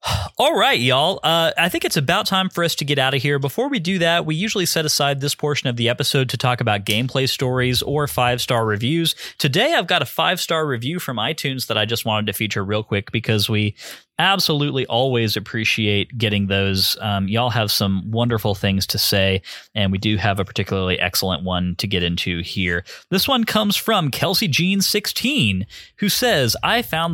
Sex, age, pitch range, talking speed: male, 20-39, 110-165 Hz, 200 wpm